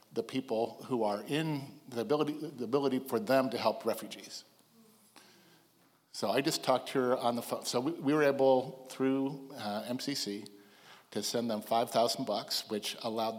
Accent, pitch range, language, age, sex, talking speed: American, 110-130 Hz, English, 50-69, male, 170 wpm